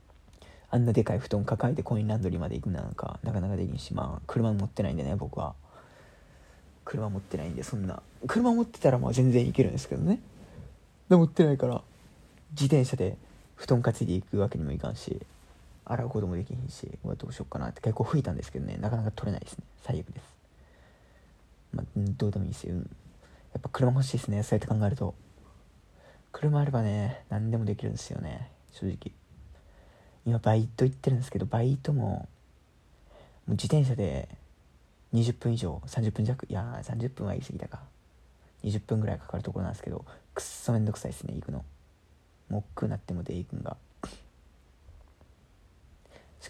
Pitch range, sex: 80-120 Hz, male